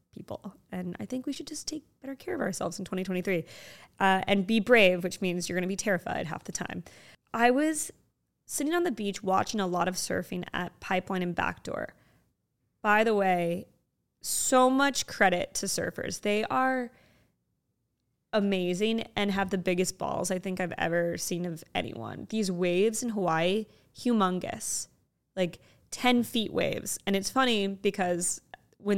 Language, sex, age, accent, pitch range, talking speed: English, female, 20-39, American, 175-210 Hz, 165 wpm